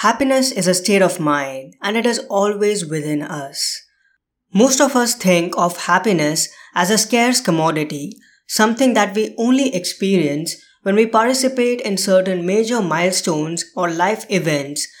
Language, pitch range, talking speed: English, 170-210 Hz, 150 wpm